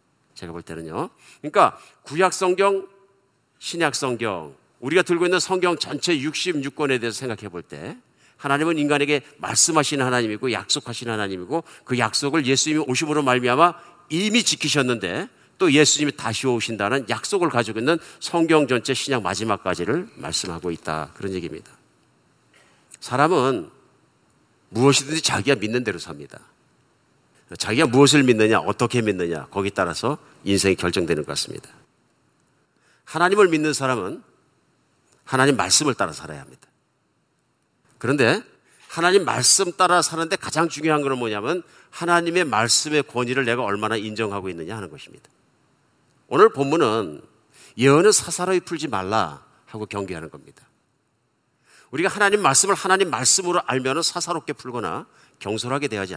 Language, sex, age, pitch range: Korean, male, 50-69, 110-165 Hz